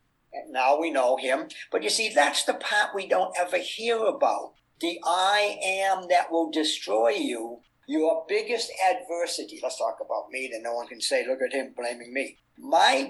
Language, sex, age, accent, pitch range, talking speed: English, male, 50-69, American, 155-205 Hz, 185 wpm